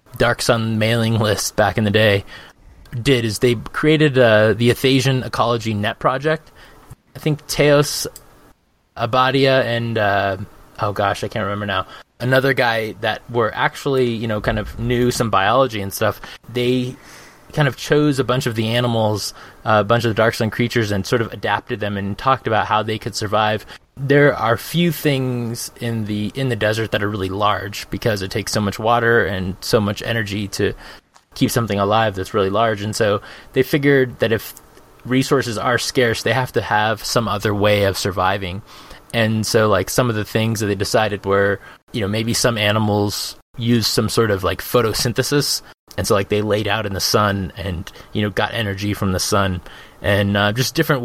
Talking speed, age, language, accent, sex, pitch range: 195 wpm, 20-39, English, American, male, 105-125 Hz